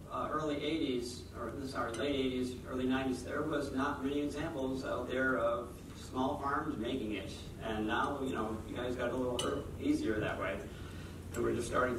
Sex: male